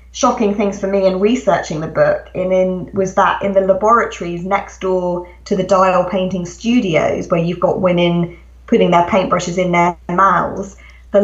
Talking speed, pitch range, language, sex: 175 wpm, 175-195 Hz, English, female